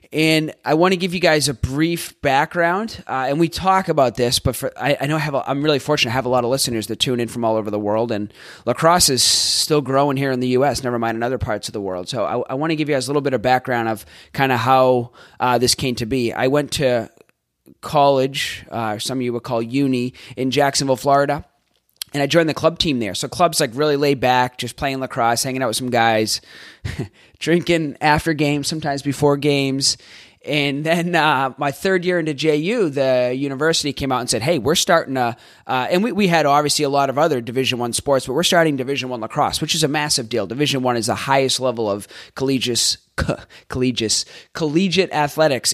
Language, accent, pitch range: English, American, 125-150 Hz